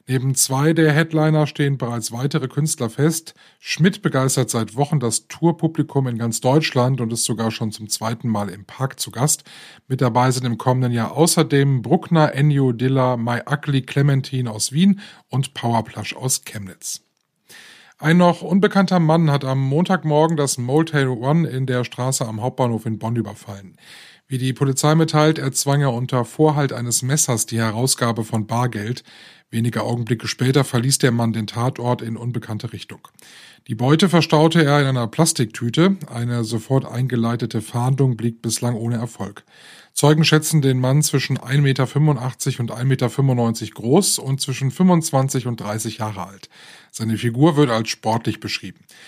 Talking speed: 160 wpm